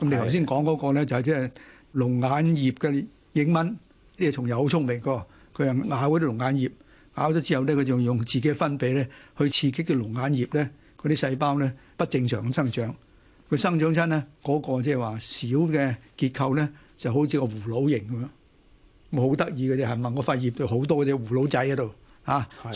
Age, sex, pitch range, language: 60-79, male, 125-150 Hz, Chinese